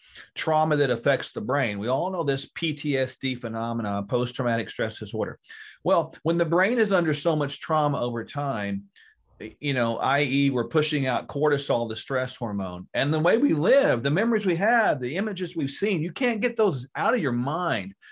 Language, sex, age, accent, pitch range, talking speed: English, male, 40-59, American, 120-170 Hz, 185 wpm